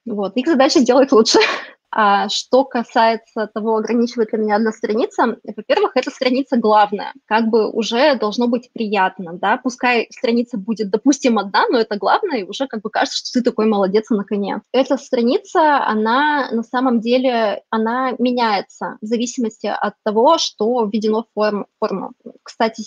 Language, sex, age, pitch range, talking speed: Russian, female, 20-39, 215-245 Hz, 155 wpm